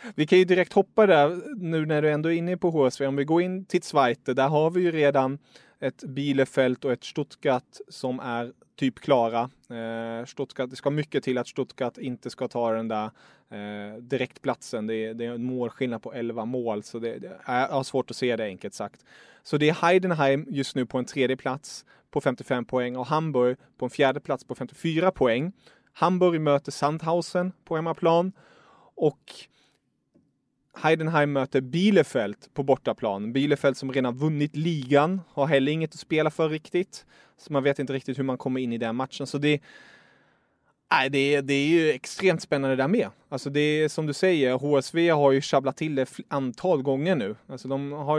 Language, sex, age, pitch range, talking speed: English, male, 30-49, 130-155 Hz, 190 wpm